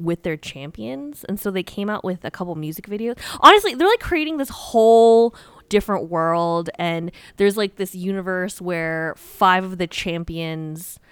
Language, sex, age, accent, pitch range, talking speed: English, female, 20-39, American, 160-195 Hz, 165 wpm